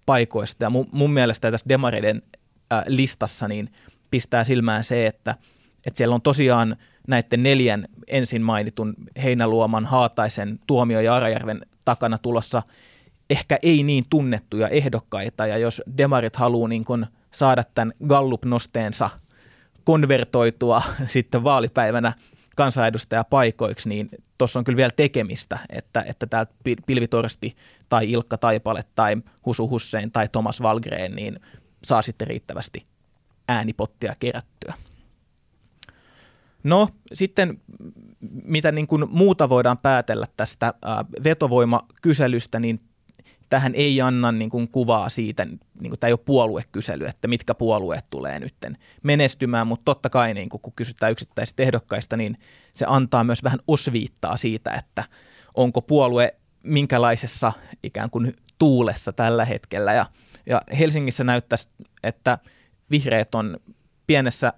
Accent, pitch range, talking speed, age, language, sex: native, 115-130 Hz, 125 wpm, 20-39, Finnish, male